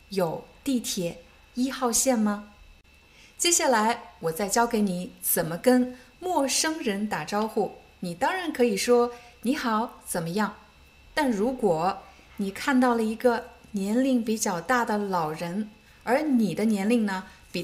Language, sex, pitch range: Chinese, female, 190-255 Hz